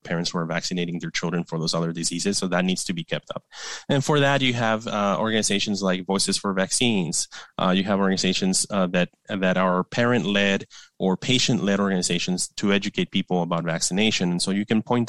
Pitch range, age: 90-110 Hz, 20-39